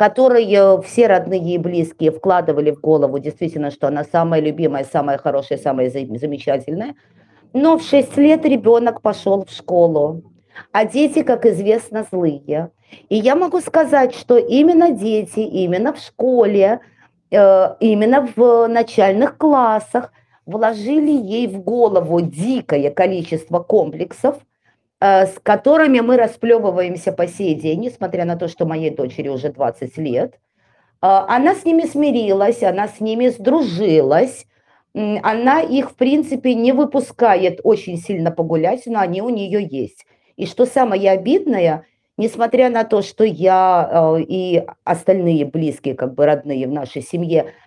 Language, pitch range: Russian, 165-240 Hz